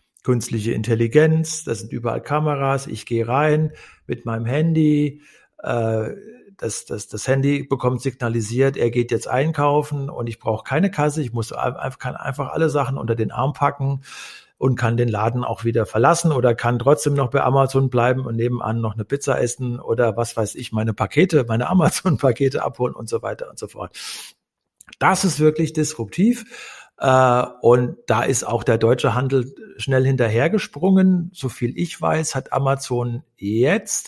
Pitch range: 115-145 Hz